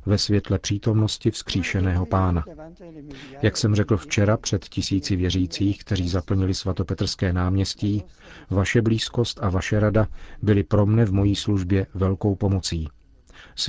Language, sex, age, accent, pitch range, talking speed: Czech, male, 40-59, native, 95-105 Hz, 130 wpm